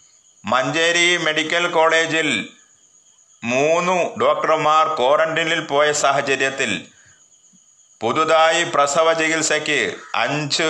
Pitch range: 145-170 Hz